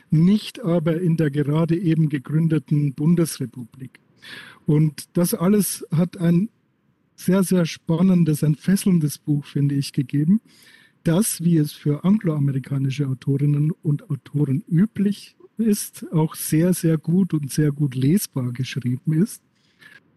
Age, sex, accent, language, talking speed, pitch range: 50-69, male, German, German, 125 wpm, 145-175 Hz